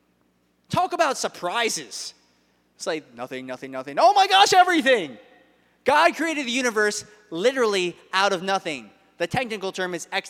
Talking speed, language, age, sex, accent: 145 wpm, English, 20-39, male, American